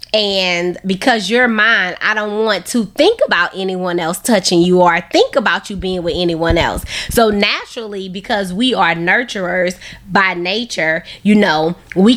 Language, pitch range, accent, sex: English, 175-210 Hz, American, female